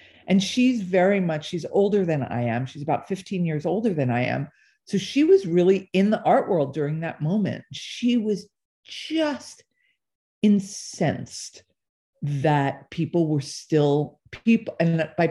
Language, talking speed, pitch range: English, 155 wpm, 140-180 Hz